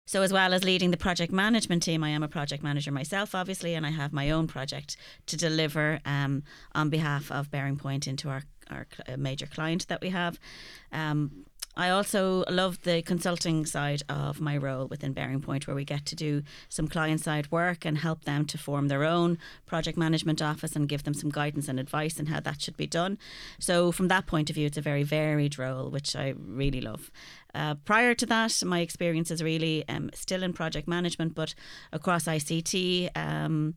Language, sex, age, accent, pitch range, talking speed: English, female, 30-49, Irish, 145-170 Hz, 205 wpm